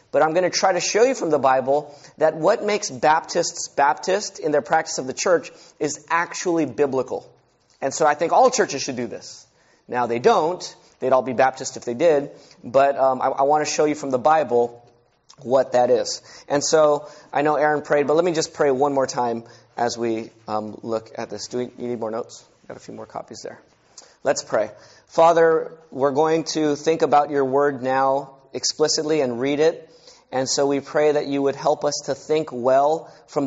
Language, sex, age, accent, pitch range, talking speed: English, male, 30-49, American, 135-160 Hz, 210 wpm